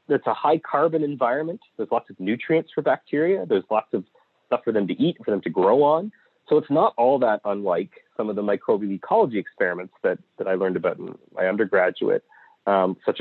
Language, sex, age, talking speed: English, male, 30-49, 205 wpm